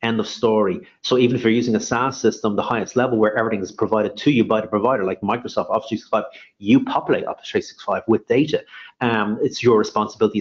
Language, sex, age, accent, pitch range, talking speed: English, male, 30-49, Irish, 105-130 Hz, 215 wpm